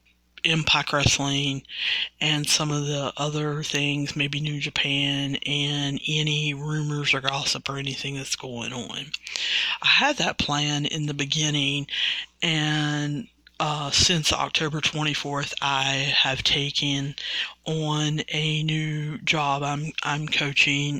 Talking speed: 125 wpm